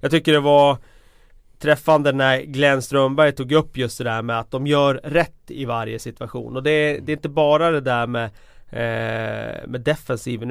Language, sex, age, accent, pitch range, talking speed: Swedish, male, 30-49, native, 120-150 Hz, 195 wpm